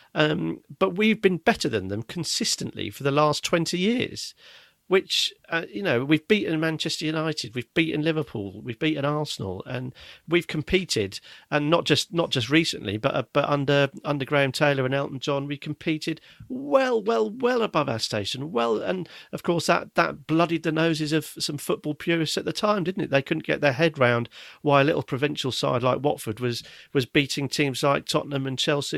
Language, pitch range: English, 130-165 Hz